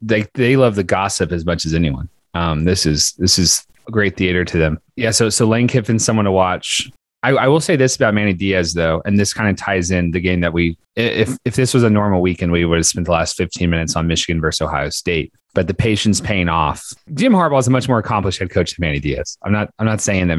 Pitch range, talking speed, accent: 90-110 Hz, 260 wpm, American